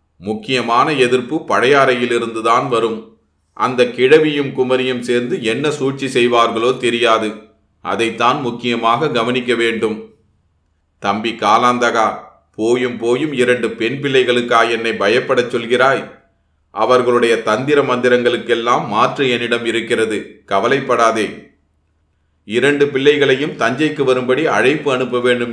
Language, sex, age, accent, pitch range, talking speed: Tamil, male, 40-59, native, 110-130 Hz, 95 wpm